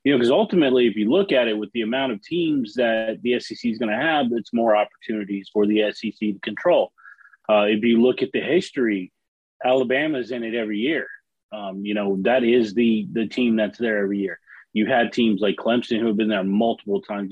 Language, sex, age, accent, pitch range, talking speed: English, male, 30-49, American, 105-125 Hz, 220 wpm